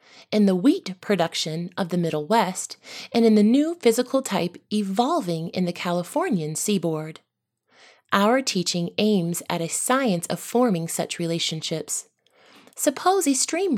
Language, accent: English, American